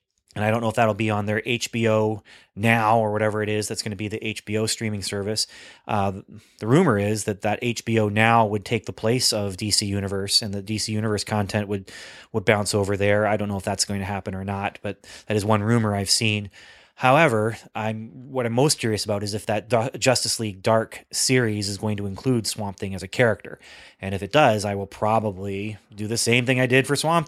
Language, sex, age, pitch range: English, male, 30-49, 105-120 Hz